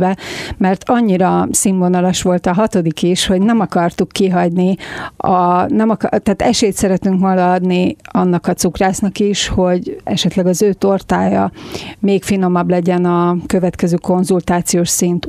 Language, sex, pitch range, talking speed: Hungarian, female, 175-195 Hz, 140 wpm